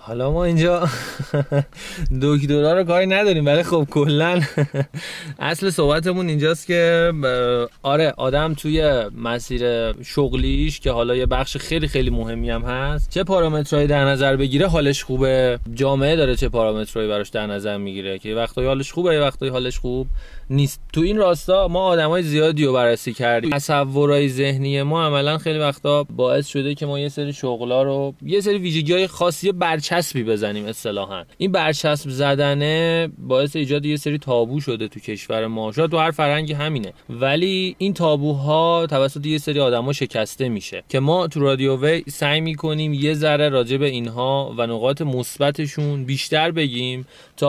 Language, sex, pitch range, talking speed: Persian, male, 125-155 Hz, 160 wpm